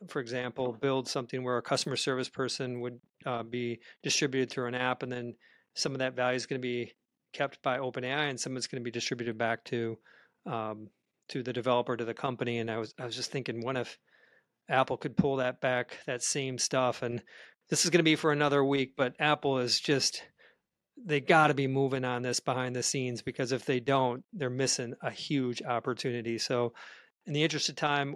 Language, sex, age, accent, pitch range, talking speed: English, male, 40-59, American, 125-145 Hz, 215 wpm